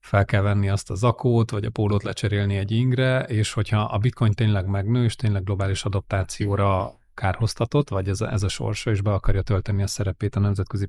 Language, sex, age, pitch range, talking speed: Hungarian, male, 30-49, 100-115 Hz, 205 wpm